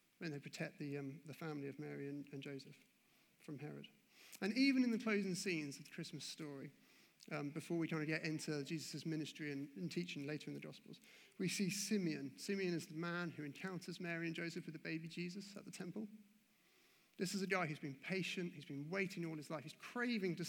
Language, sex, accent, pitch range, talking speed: English, male, British, 150-190 Hz, 220 wpm